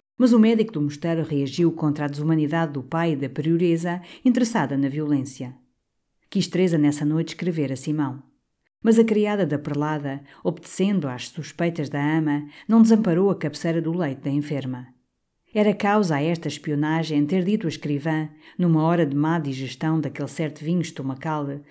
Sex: female